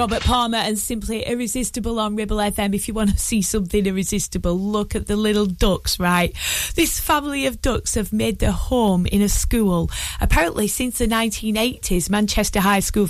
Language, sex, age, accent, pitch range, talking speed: English, female, 30-49, British, 190-235 Hz, 180 wpm